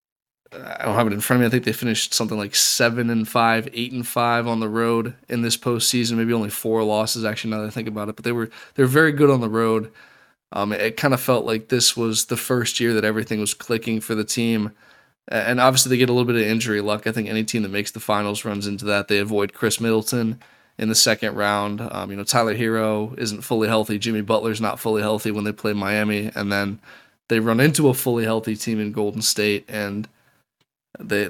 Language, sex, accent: English, male, American